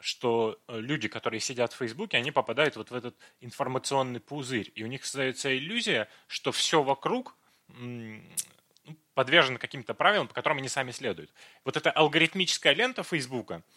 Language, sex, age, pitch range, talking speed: Russian, male, 20-39, 125-165 Hz, 150 wpm